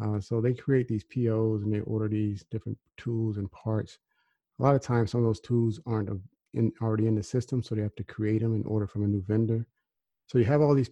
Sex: male